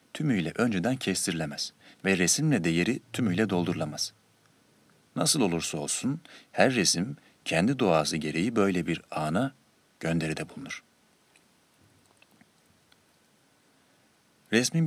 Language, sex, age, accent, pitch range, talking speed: Turkish, male, 40-59, native, 80-105 Hz, 90 wpm